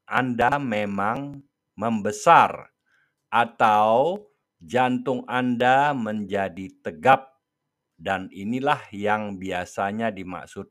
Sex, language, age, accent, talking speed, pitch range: male, Indonesian, 50-69, native, 75 wpm, 95-135 Hz